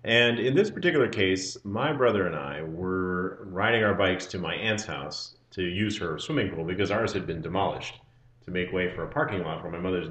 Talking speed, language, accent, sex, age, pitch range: 220 wpm, English, American, male, 30-49, 90-120 Hz